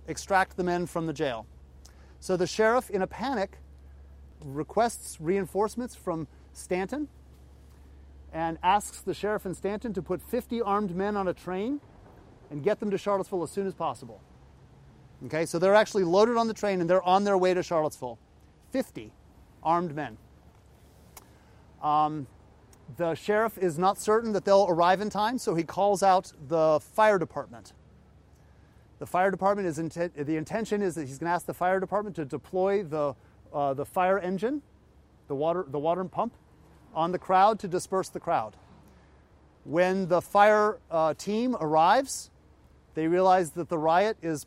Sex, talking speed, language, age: male, 165 wpm, English, 30-49